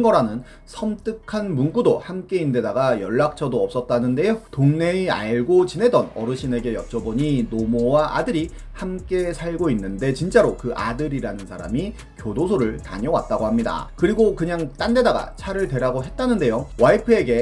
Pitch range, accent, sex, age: 125-190 Hz, native, male, 30-49